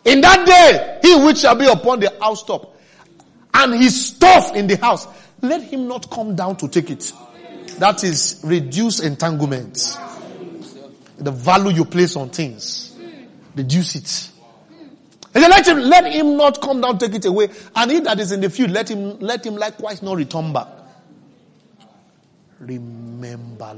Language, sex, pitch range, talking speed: English, male, 155-225 Hz, 160 wpm